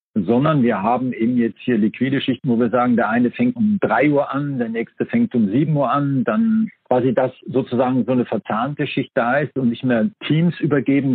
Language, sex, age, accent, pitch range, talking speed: German, male, 50-69, German, 125-195 Hz, 215 wpm